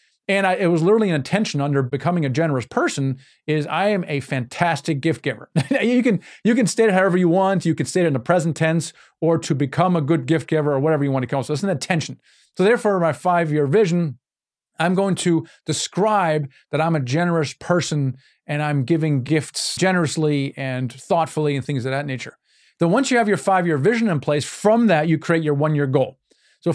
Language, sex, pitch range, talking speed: English, male, 150-190 Hz, 220 wpm